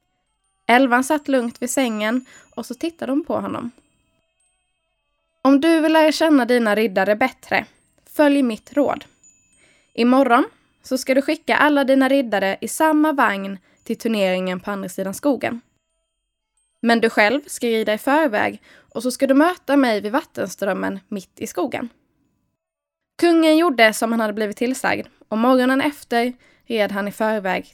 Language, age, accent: Swedish, 10-29, native